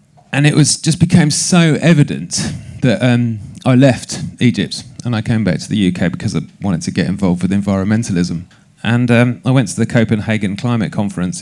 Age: 30-49